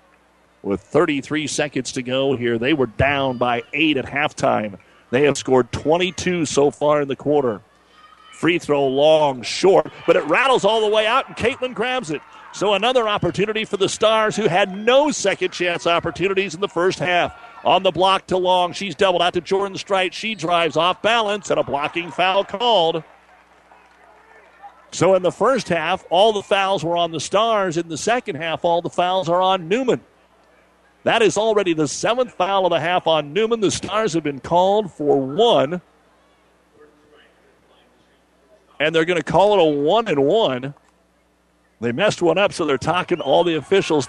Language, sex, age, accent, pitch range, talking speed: English, male, 50-69, American, 145-195 Hz, 180 wpm